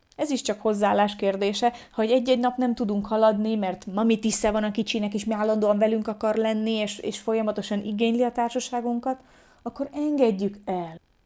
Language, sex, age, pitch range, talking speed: Hungarian, female, 30-49, 190-240 Hz, 170 wpm